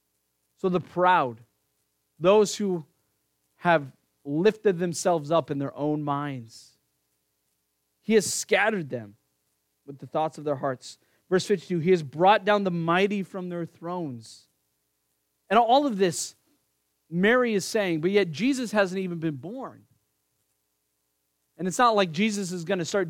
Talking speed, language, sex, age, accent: 150 wpm, English, male, 30-49, American